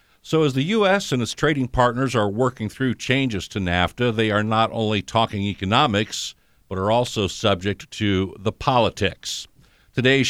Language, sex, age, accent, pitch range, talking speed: English, male, 50-69, American, 100-130 Hz, 165 wpm